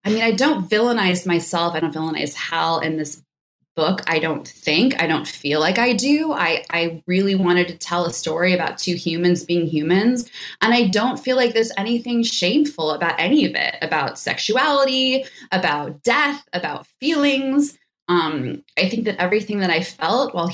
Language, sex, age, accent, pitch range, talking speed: English, female, 20-39, American, 165-235 Hz, 180 wpm